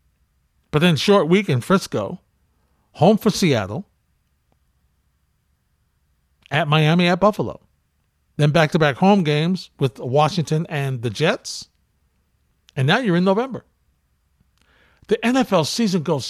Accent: American